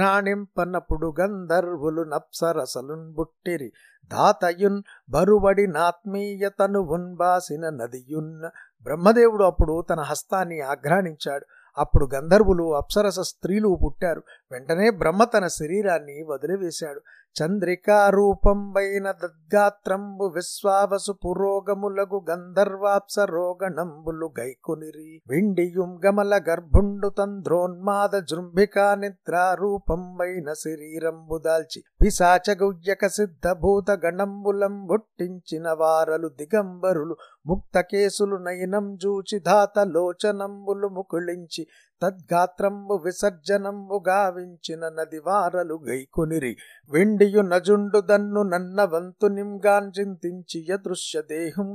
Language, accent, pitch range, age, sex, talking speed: Telugu, native, 165-200 Hz, 50-69, male, 70 wpm